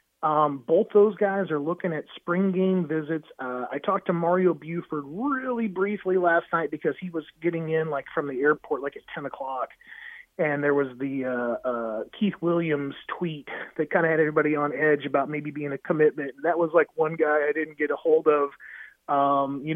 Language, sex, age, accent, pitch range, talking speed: English, male, 30-49, American, 150-185 Hz, 200 wpm